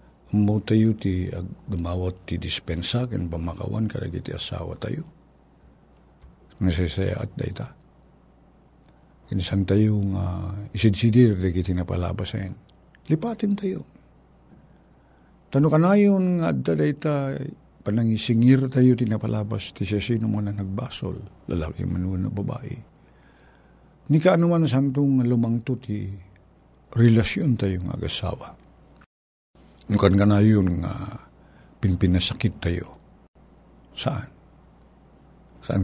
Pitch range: 95-120 Hz